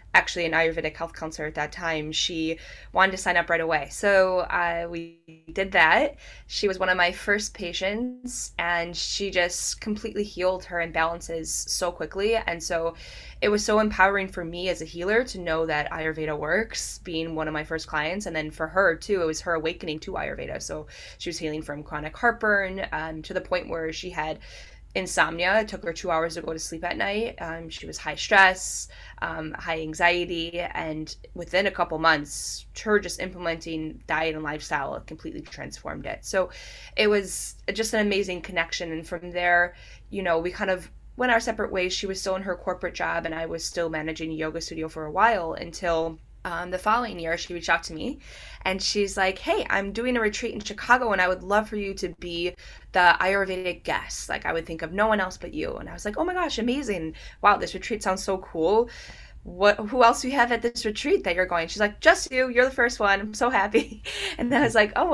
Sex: female